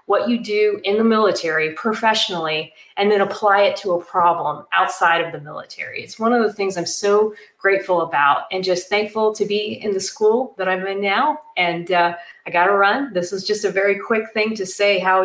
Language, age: English, 30-49